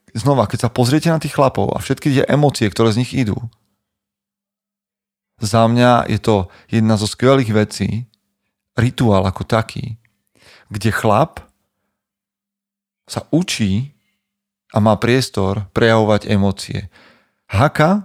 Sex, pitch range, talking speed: male, 100-125 Hz, 120 wpm